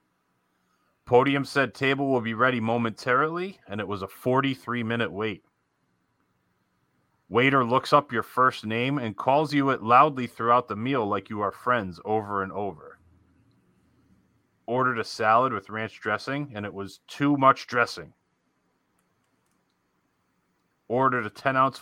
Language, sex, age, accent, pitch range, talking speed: English, male, 30-49, American, 105-135 Hz, 135 wpm